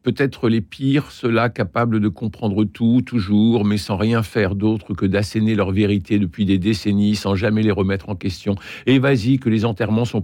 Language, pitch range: French, 95-110 Hz